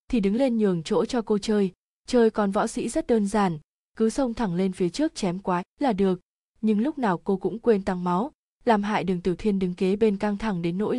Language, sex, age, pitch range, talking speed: Vietnamese, female, 20-39, 190-230 Hz, 245 wpm